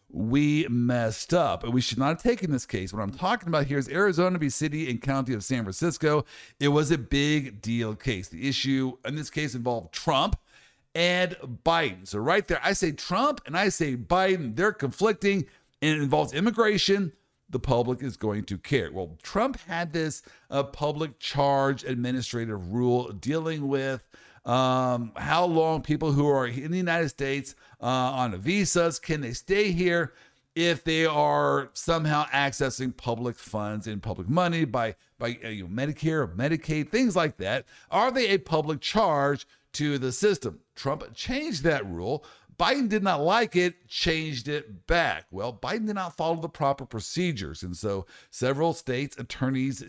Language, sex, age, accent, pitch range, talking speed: English, male, 50-69, American, 120-170 Hz, 175 wpm